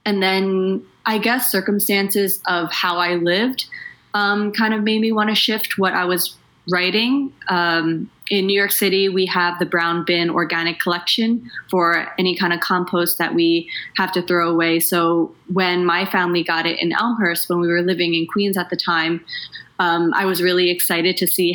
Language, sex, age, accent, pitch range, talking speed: English, female, 20-39, American, 170-195 Hz, 190 wpm